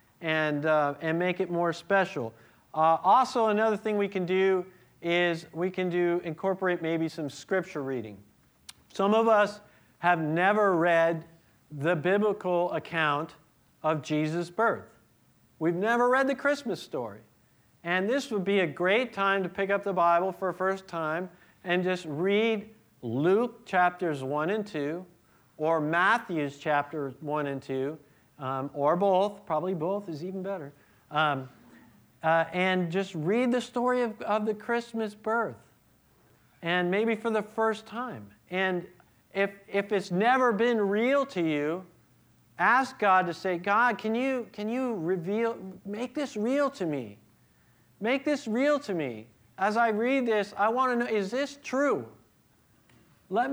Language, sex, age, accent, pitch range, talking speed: English, male, 50-69, American, 155-215 Hz, 155 wpm